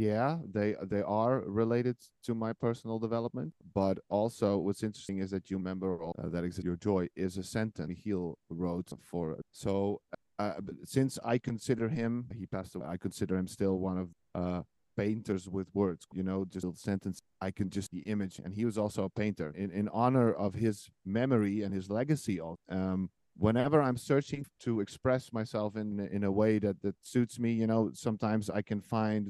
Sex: male